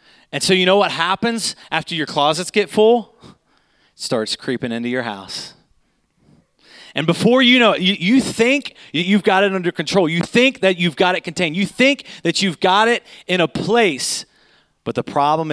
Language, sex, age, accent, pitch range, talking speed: English, male, 30-49, American, 160-215 Hz, 190 wpm